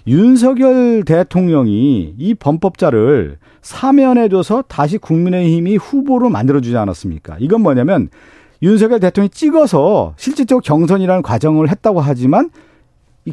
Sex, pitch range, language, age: male, 140-205 Hz, Korean, 40-59